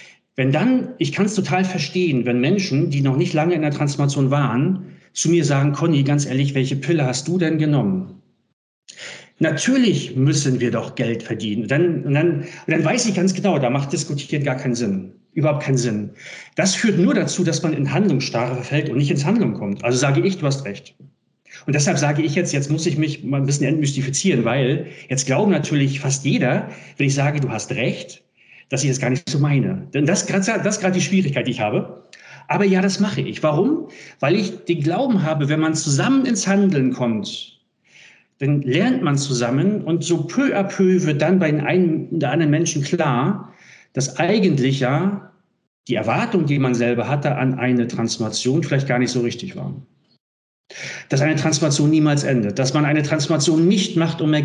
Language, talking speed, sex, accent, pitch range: German, 200 wpm, male, German, 135-175 Hz